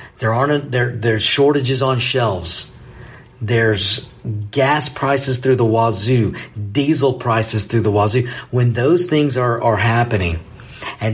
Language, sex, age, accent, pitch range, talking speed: English, male, 50-69, American, 110-135 Hz, 140 wpm